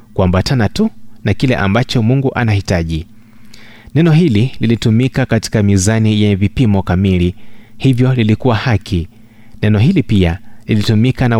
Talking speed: 120 wpm